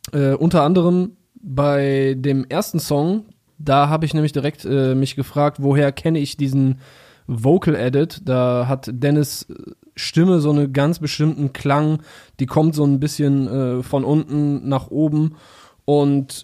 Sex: male